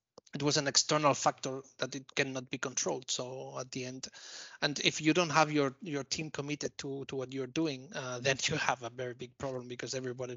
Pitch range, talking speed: 130-145 Hz, 220 wpm